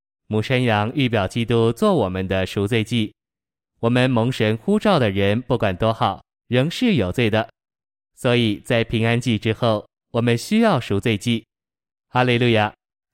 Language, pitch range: Chinese, 105-130 Hz